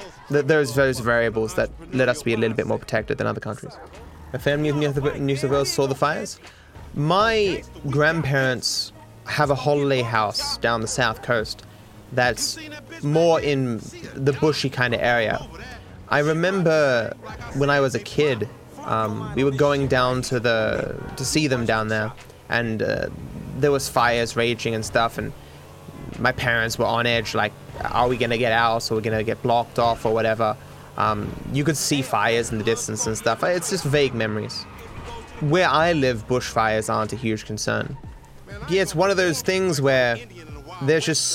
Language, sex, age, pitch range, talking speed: English, male, 20-39, 115-145 Hz, 175 wpm